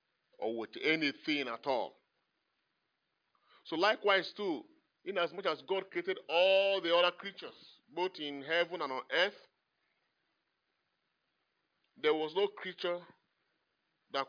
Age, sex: 40-59, male